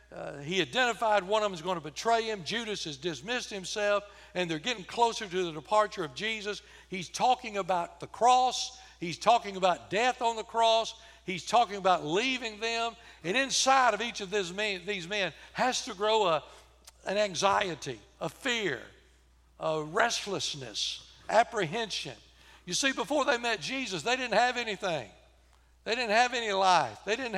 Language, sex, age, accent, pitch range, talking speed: English, male, 60-79, American, 175-235 Hz, 165 wpm